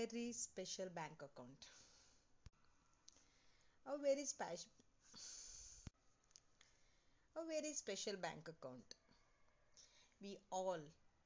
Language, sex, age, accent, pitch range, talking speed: English, female, 30-49, Indian, 180-235 Hz, 70 wpm